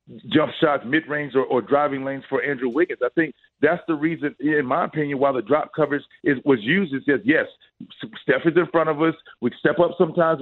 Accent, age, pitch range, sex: American, 40-59, 145-170 Hz, male